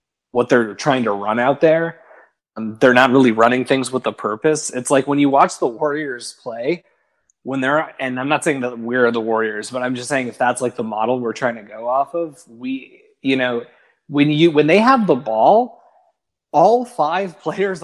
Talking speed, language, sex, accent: 210 wpm, English, male, American